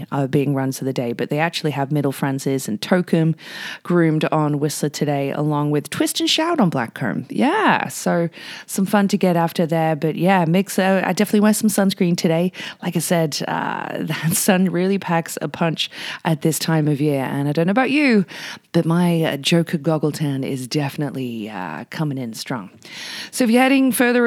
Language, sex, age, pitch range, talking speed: English, female, 20-39, 145-185 Hz, 205 wpm